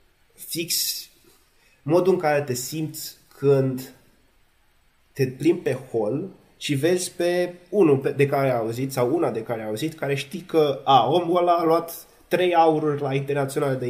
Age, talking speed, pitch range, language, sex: 20-39, 165 wpm, 125-155 Hz, Romanian, male